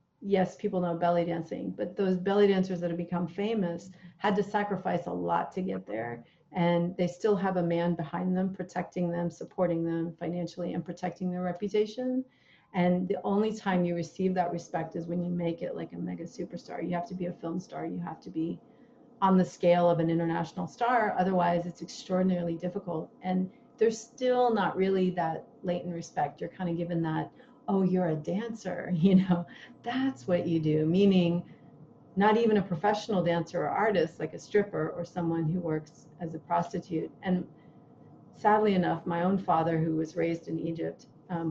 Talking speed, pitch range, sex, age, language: 190 wpm, 170-190 Hz, female, 40-59, English